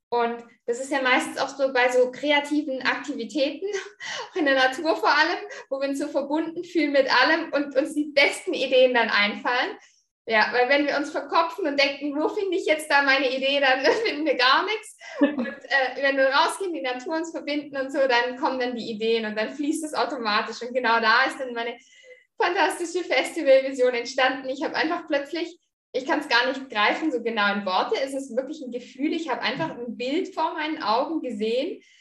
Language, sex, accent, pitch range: German, female, German, 255-315 Hz